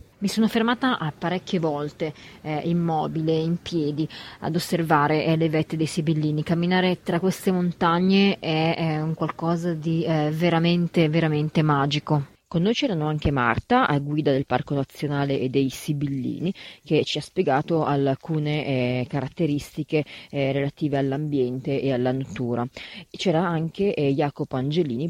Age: 30-49